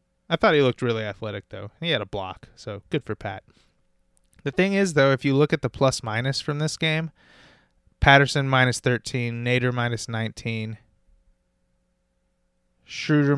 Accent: American